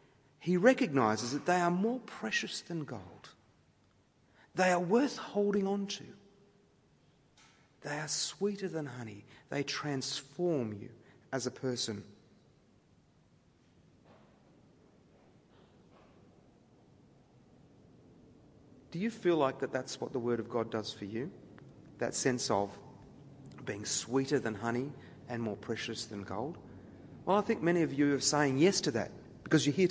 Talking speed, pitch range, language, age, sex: 130 wpm, 125-205 Hz, English, 40-59, male